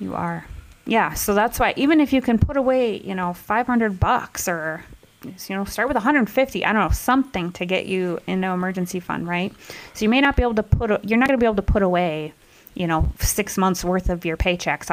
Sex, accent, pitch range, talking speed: female, American, 170-215 Hz, 235 wpm